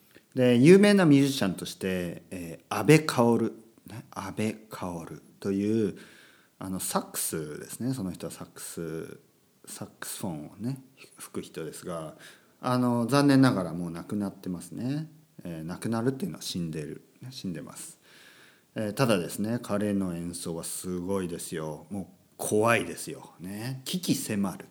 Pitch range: 90-135 Hz